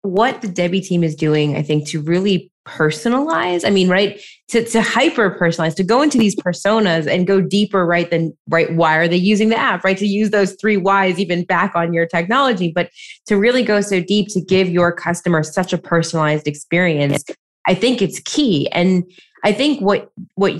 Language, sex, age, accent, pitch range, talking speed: English, female, 20-39, American, 175-220 Hz, 200 wpm